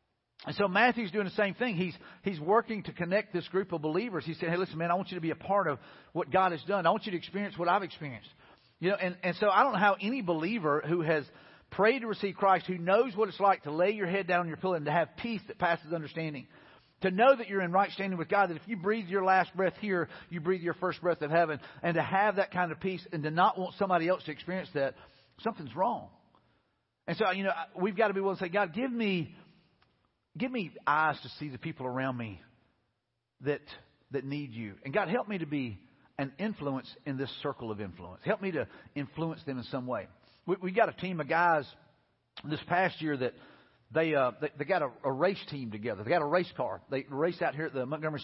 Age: 40-59